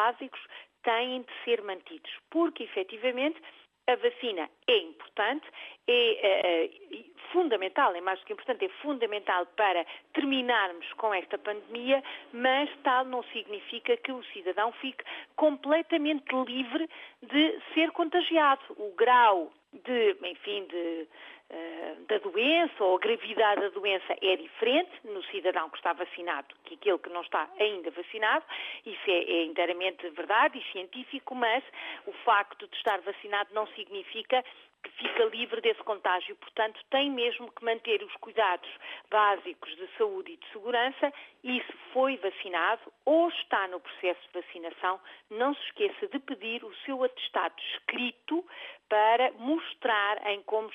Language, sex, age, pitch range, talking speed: Portuguese, female, 40-59, 205-315 Hz, 145 wpm